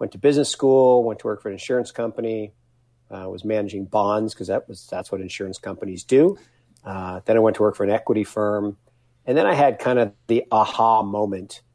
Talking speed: 215 wpm